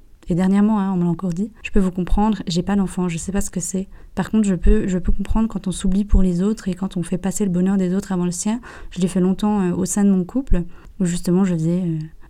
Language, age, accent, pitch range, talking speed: French, 20-39, French, 180-200 Hz, 300 wpm